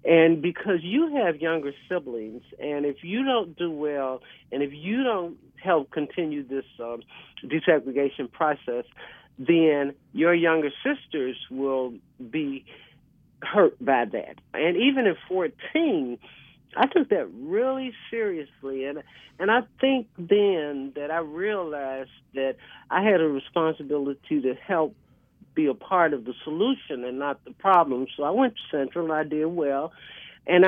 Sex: male